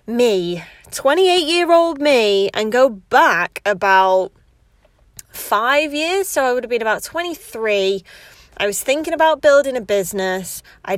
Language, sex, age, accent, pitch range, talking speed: English, female, 20-39, British, 200-285 Hz, 140 wpm